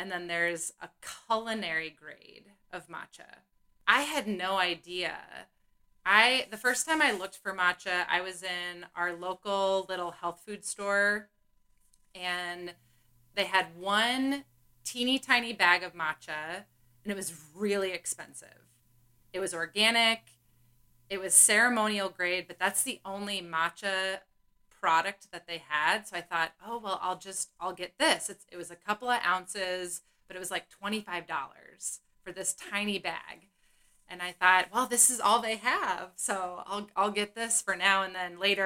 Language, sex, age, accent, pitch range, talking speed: English, female, 30-49, American, 170-205 Hz, 160 wpm